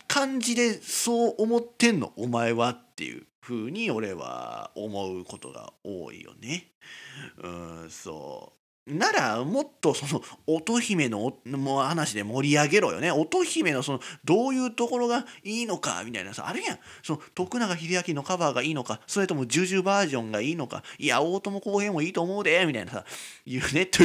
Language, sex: Japanese, male